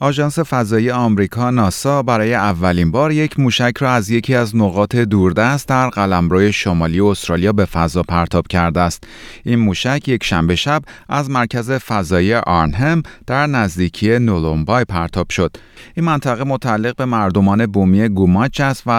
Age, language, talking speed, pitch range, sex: 30-49, Persian, 150 wpm, 90-125 Hz, male